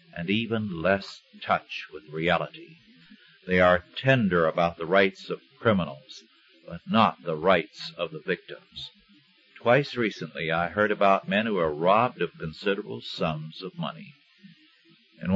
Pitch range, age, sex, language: 90-125 Hz, 50-69, male, English